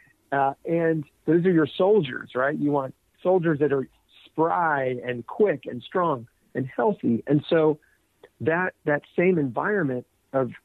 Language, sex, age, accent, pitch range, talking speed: English, male, 50-69, American, 125-155 Hz, 145 wpm